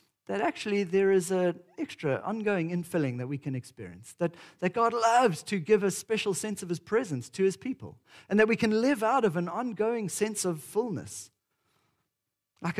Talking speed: 190 wpm